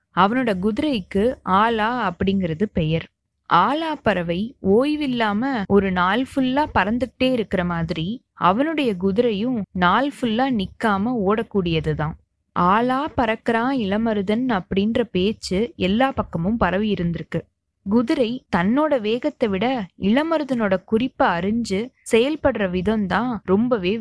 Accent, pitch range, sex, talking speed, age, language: native, 190-250 Hz, female, 90 wpm, 20-39, Tamil